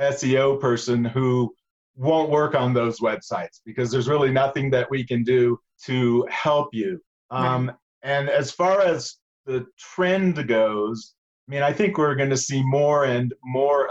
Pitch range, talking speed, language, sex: 120-140 Hz, 165 wpm, English, male